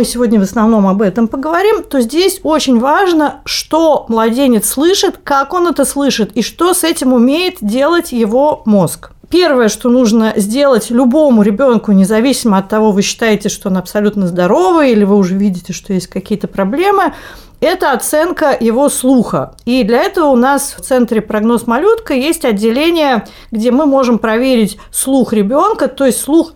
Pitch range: 220-295 Hz